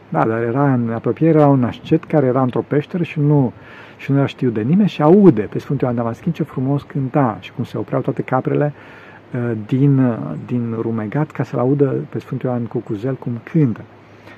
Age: 50-69